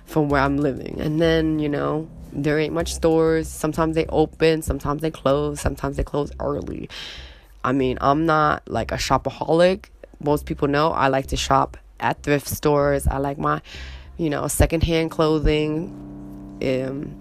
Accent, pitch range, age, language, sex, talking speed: American, 130-155 Hz, 20-39, English, female, 165 wpm